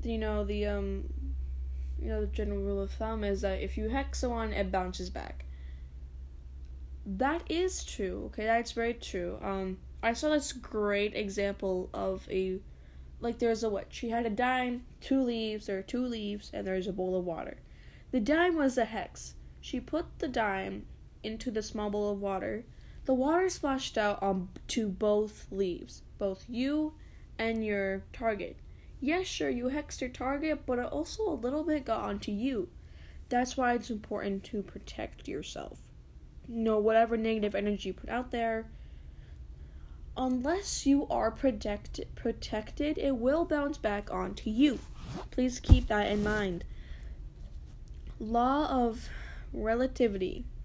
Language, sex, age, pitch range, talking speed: English, female, 10-29, 185-250 Hz, 160 wpm